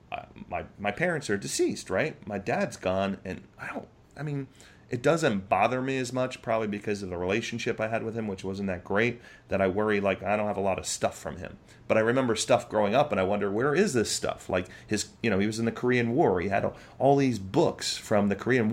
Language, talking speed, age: English, 255 wpm, 30-49